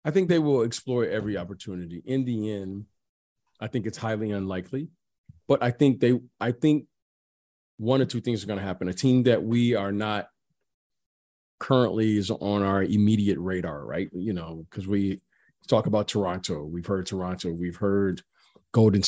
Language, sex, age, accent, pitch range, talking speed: English, male, 40-59, American, 95-125 Hz, 175 wpm